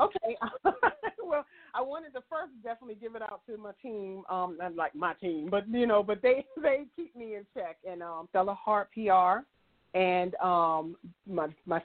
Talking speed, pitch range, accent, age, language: 180 wpm, 165-210 Hz, American, 40-59, English